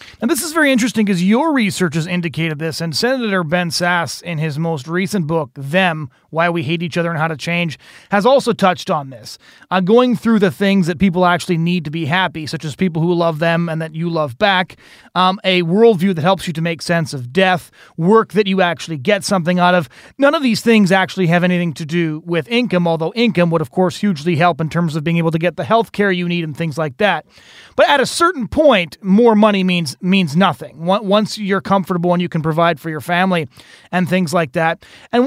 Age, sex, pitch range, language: 30-49, male, 170-210 Hz, English